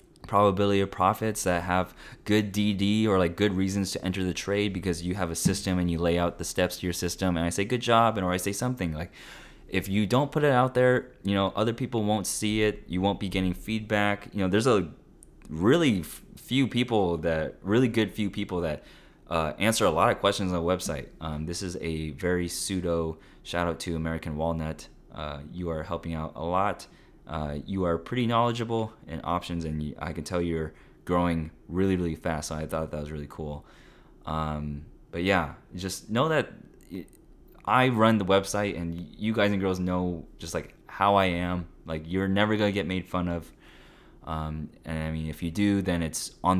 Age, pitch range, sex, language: 20-39, 85-105 Hz, male, English